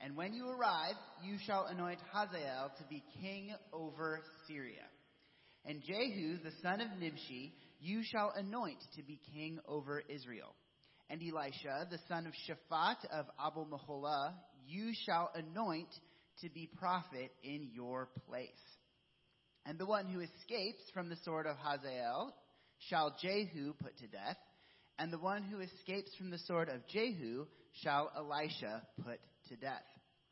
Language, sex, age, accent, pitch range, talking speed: English, male, 30-49, American, 145-190 Hz, 145 wpm